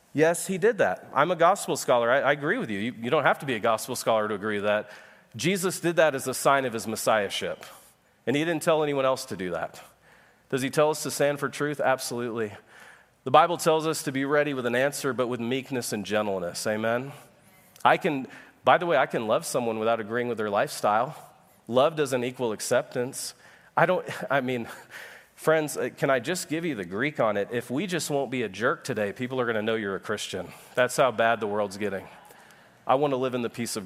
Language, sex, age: English, male, 30-49